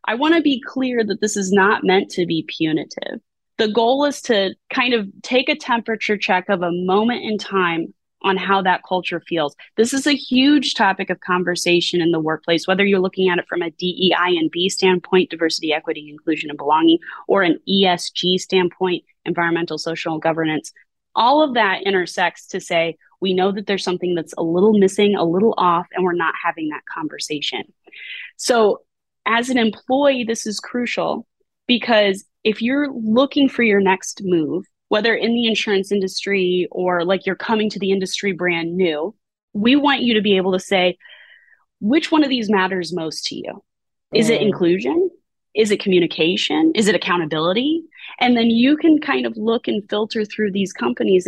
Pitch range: 175-235 Hz